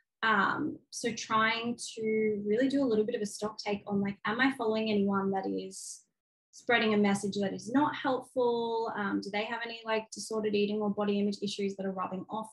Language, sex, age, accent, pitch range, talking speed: English, female, 20-39, Australian, 195-220 Hz, 210 wpm